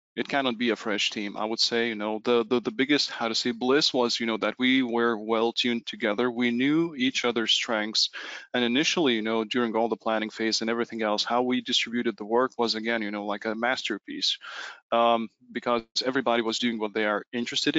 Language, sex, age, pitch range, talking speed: English, male, 20-39, 105-120 Hz, 220 wpm